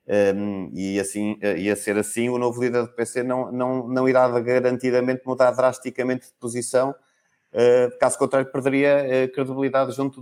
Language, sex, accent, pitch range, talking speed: Portuguese, male, Portuguese, 105-135 Hz, 165 wpm